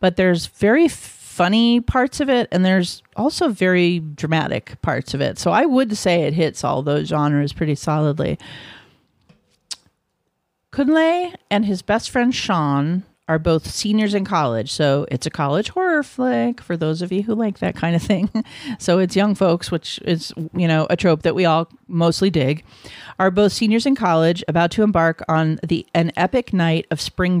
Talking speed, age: 180 wpm, 40-59